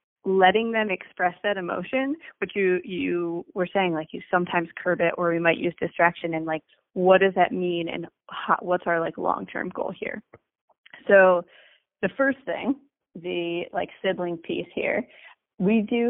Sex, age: female, 20-39